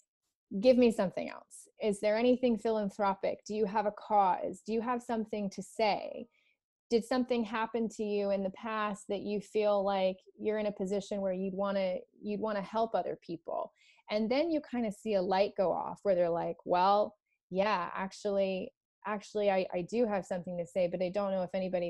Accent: American